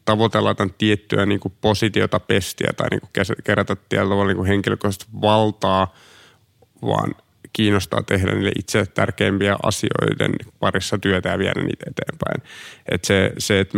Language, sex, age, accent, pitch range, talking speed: Finnish, male, 30-49, native, 100-110 Hz, 130 wpm